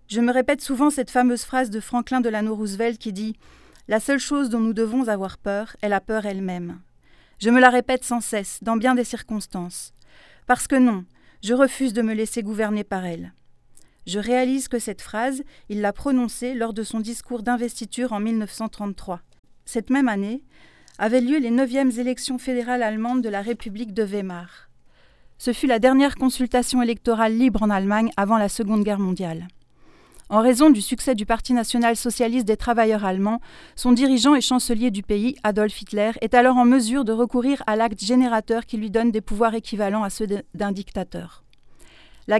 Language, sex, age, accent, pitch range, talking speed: French, female, 40-59, French, 210-250 Hz, 185 wpm